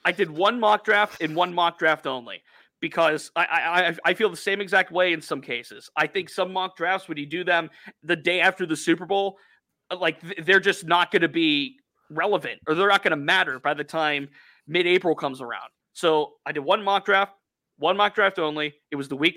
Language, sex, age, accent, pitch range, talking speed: English, male, 30-49, American, 155-195 Hz, 220 wpm